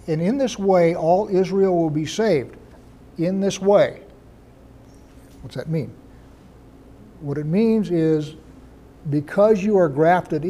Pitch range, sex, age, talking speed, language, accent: 140-180 Hz, male, 60-79, 130 wpm, English, American